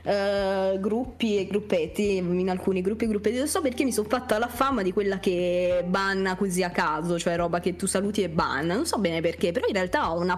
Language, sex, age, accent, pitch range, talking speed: Italian, female, 20-39, native, 175-215 Hz, 225 wpm